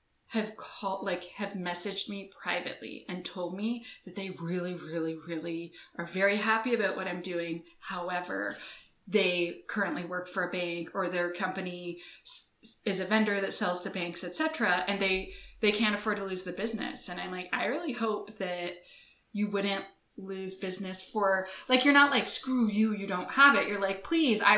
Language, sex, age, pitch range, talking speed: English, female, 20-39, 185-240 Hz, 185 wpm